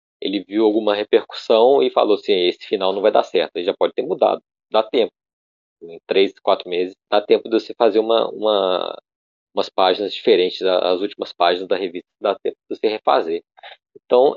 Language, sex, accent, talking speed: Portuguese, male, Brazilian, 190 wpm